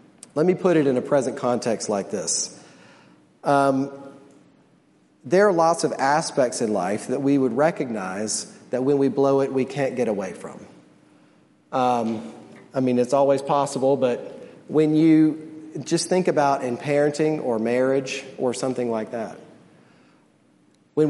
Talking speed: 150 wpm